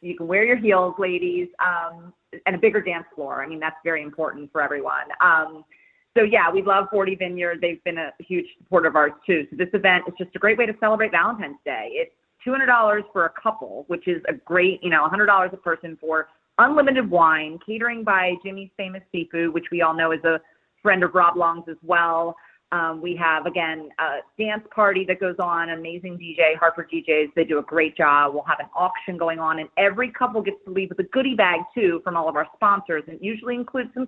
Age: 30-49